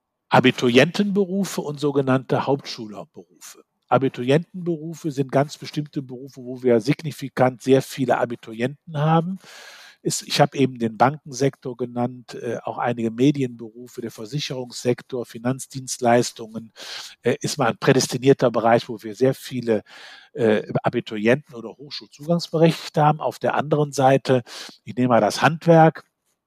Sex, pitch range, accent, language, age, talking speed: male, 125-165 Hz, German, German, 50-69, 115 wpm